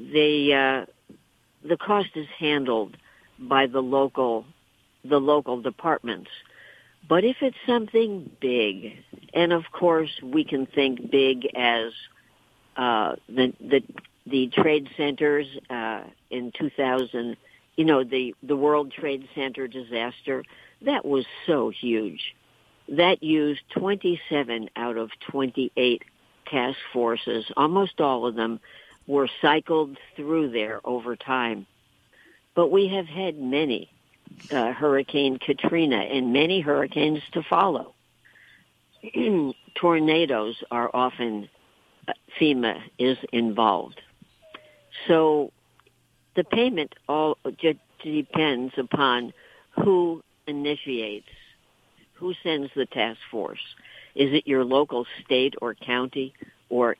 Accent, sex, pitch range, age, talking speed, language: American, female, 125-155 Hz, 60-79, 110 wpm, English